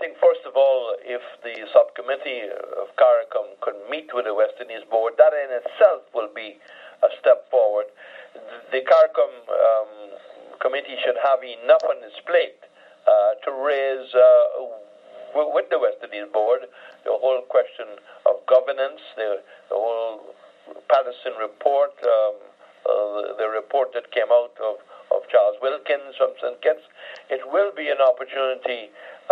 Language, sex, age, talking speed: English, male, 60-79, 145 wpm